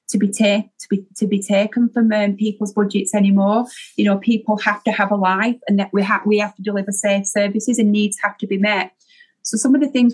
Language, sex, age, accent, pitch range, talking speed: English, female, 30-49, British, 195-215 Hz, 250 wpm